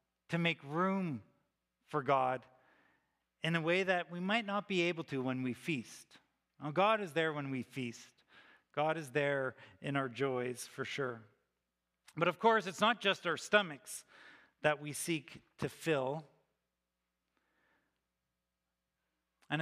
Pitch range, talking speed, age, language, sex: 130-180 Hz, 140 wpm, 40-59, English, male